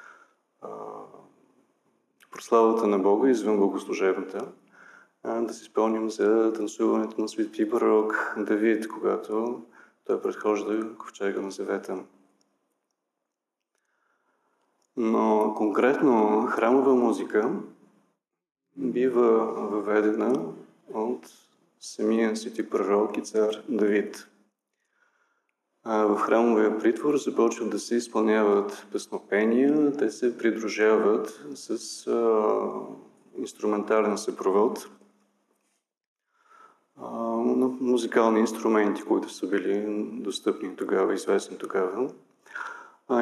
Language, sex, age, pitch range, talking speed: Bulgarian, male, 30-49, 110-130 Hz, 80 wpm